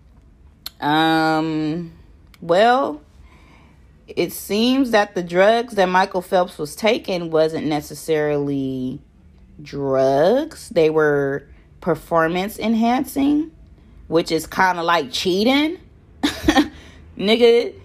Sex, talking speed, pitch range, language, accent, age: female, 85 wpm, 165-265 Hz, English, American, 30-49